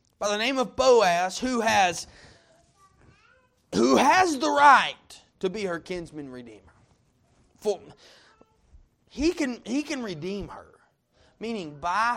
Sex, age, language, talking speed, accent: male, 30-49, English, 120 wpm, American